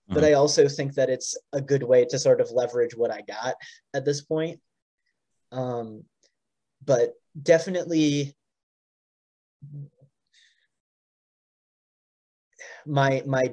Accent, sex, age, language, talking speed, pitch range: American, male, 20-39, English, 105 wpm, 130-200 Hz